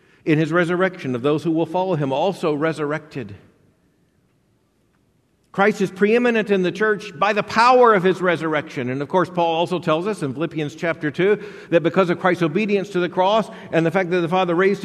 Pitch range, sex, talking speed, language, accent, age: 170-210 Hz, male, 200 wpm, English, American, 50-69